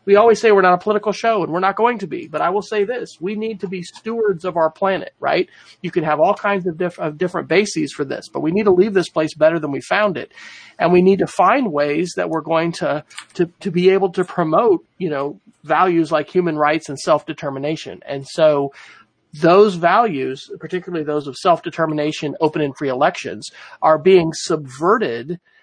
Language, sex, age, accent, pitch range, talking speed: English, male, 40-59, American, 150-185 Hz, 215 wpm